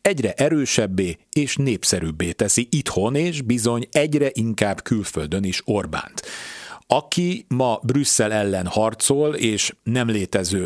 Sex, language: male, Hungarian